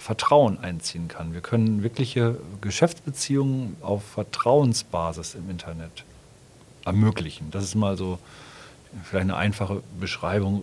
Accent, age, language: German, 40-59, German